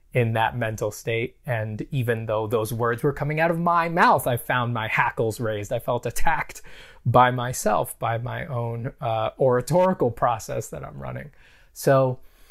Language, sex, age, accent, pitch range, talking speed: English, male, 20-39, American, 115-155 Hz, 170 wpm